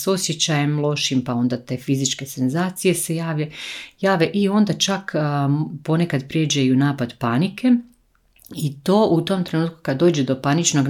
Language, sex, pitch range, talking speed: Croatian, female, 130-155 Hz, 155 wpm